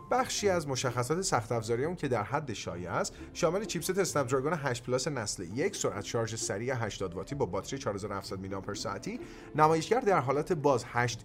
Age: 30-49